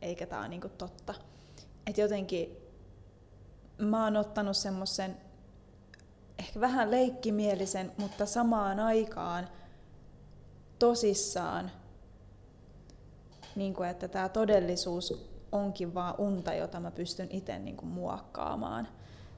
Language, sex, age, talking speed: Finnish, female, 20-39, 95 wpm